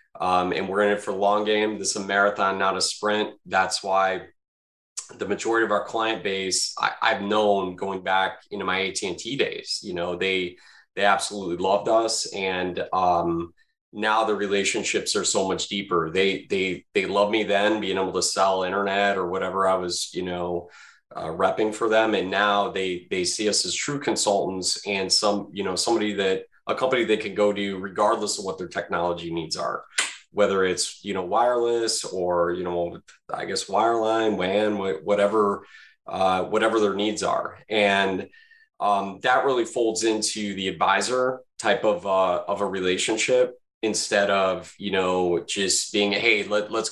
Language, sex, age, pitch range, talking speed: English, male, 20-39, 95-110 Hz, 175 wpm